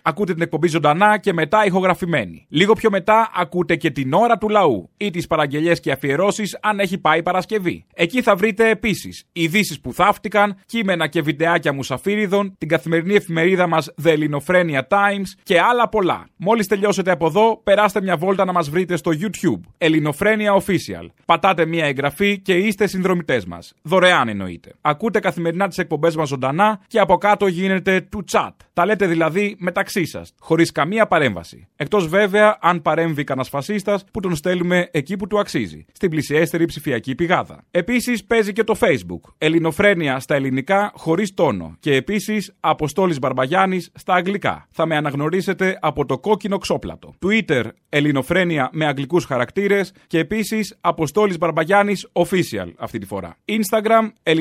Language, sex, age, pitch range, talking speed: Greek, male, 30-49, 160-205 Hz, 140 wpm